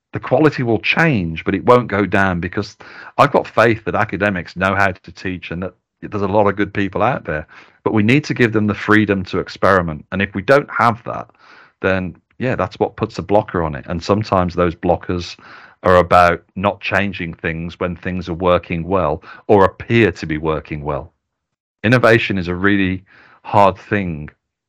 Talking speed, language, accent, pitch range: 195 wpm, English, British, 85-105 Hz